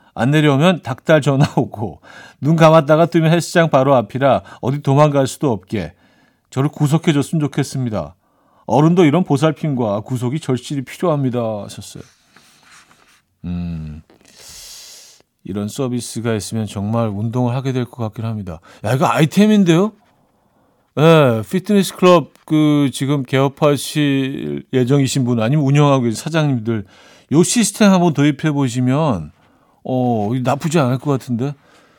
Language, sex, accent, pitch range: Korean, male, native, 105-155 Hz